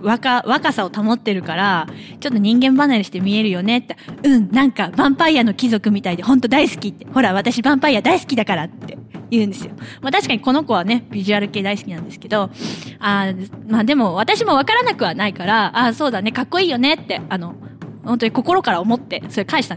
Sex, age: female, 20-39